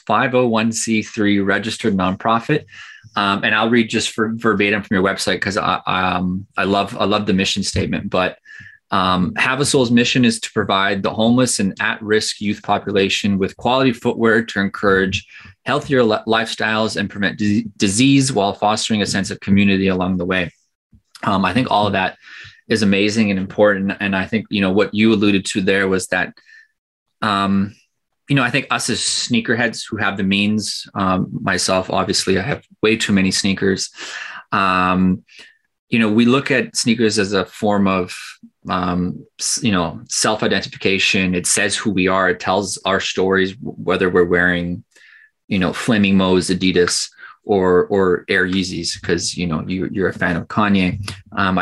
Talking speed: 175 wpm